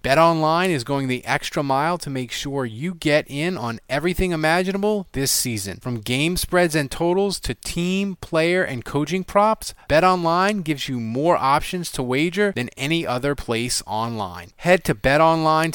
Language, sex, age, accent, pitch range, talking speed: English, male, 30-49, American, 110-160 Hz, 165 wpm